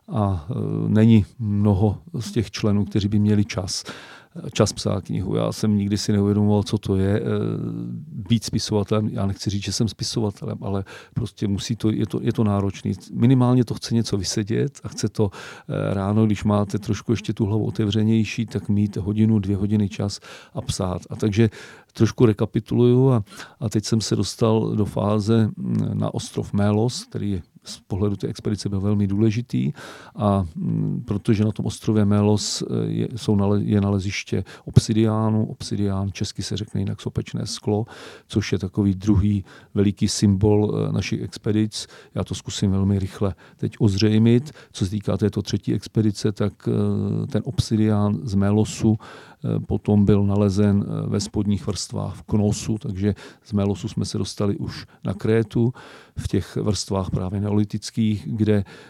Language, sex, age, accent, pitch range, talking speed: Czech, male, 40-59, native, 100-115 Hz, 165 wpm